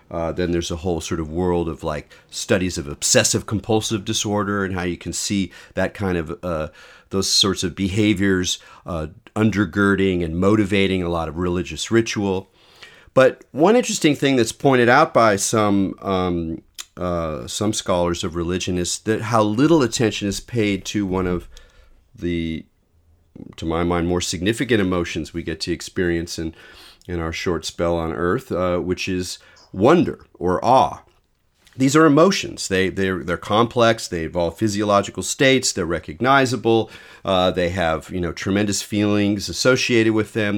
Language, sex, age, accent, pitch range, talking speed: English, male, 40-59, American, 85-110 Hz, 160 wpm